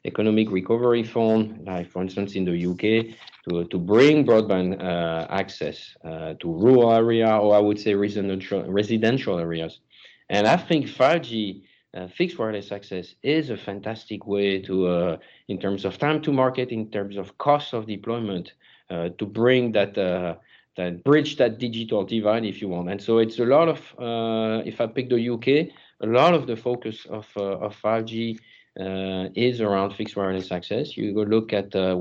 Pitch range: 100-120 Hz